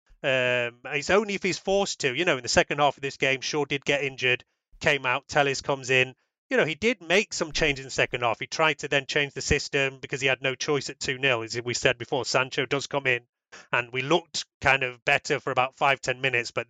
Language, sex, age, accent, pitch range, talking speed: English, male, 30-49, British, 130-155 Hz, 250 wpm